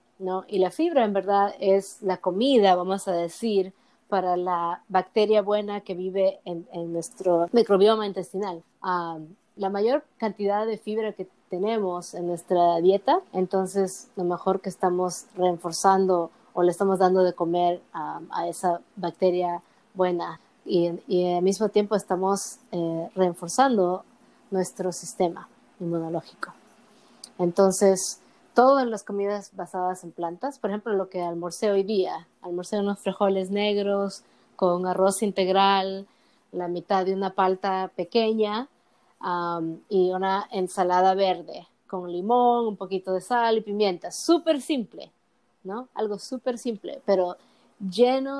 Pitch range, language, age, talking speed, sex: 180-210 Hz, Spanish, 20-39, 135 wpm, female